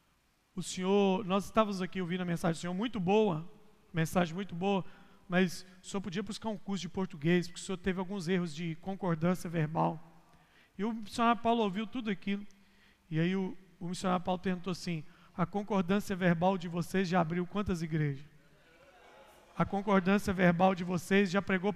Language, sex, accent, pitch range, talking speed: Portuguese, male, Brazilian, 175-220 Hz, 175 wpm